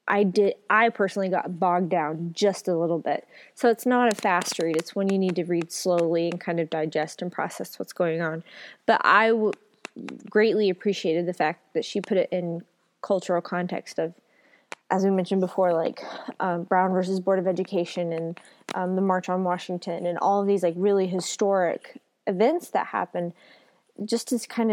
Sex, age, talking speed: female, 20-39, 190 wpm